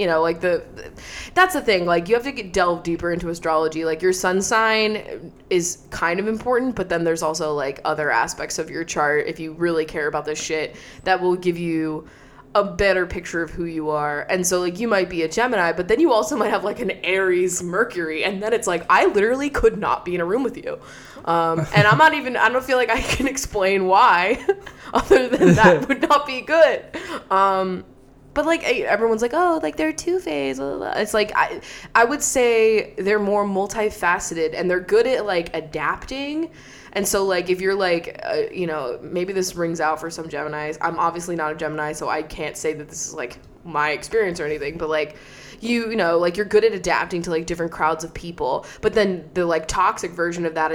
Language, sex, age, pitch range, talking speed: English, female, 20-39, 160-215 Hz, 225 wpm